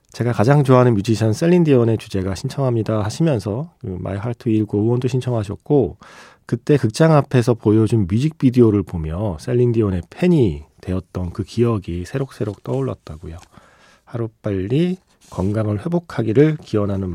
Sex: male